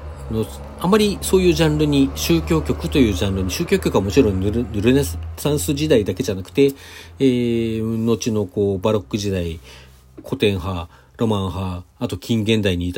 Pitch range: 95-150 Hz